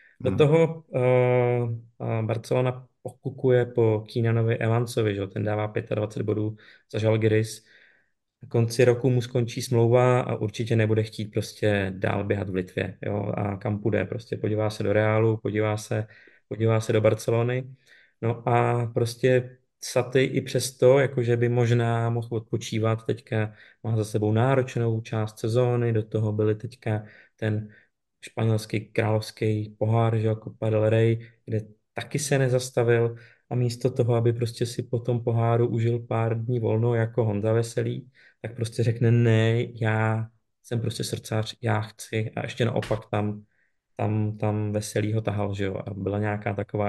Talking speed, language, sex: 150 wpm, Czech, male